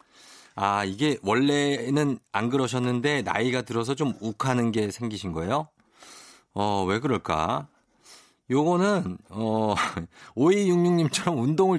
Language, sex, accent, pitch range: Korean, male, native, 100-150 Hz